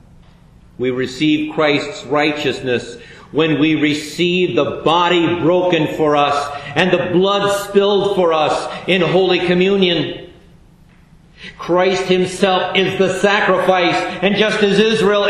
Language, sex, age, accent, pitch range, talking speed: English, male, 50-69, American, 155-200 Hz, 120 wpm